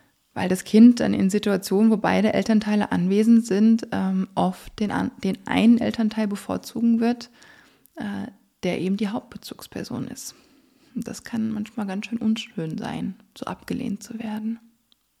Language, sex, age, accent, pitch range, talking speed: German, female, 20-39, German, 190-230 Hz, 140 wpm